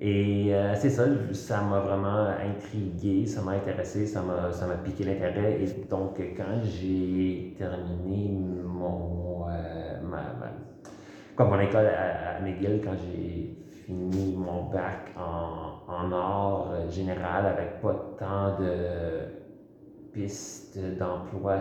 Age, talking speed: 30-49, 135 wpm